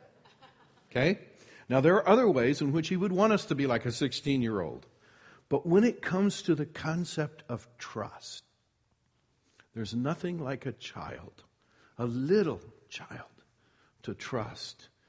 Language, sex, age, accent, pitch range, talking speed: English, male, 60-79, American, 115-195 Hz, 145 wpm